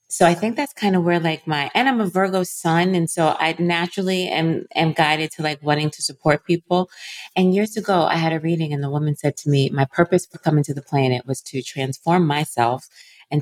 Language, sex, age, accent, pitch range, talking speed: English, female, 30-49, American, 140-185 Hz, 235 wpm